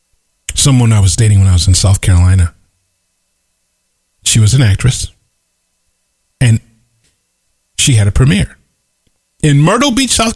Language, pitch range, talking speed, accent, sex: English, 90-150 Hz, 135 wpm, American, male